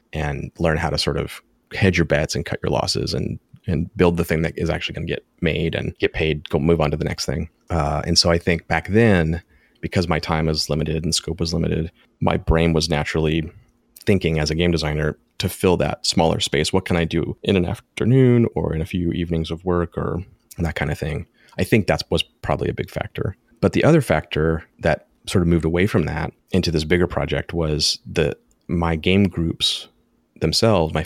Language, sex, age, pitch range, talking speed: English, male, 30-49, 80-90 Hz, 220 wpm